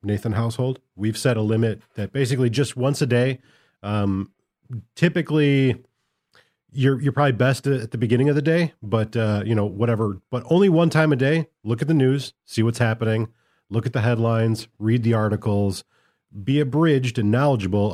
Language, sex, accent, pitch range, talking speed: English, male, American, 110-140 Hz, 175 wpm